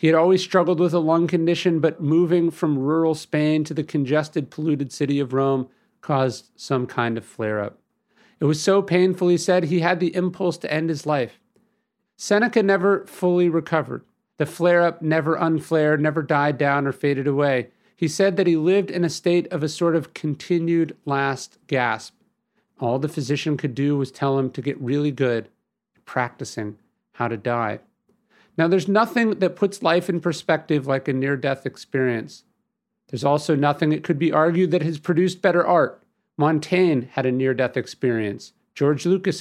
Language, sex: English, male